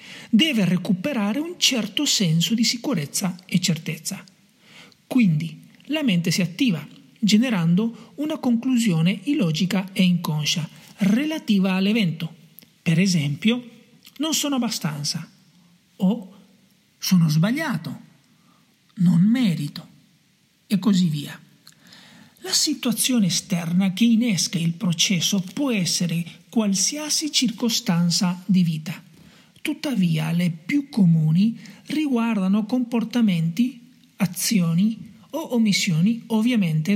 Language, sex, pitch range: Italian, male, 180-230 Hz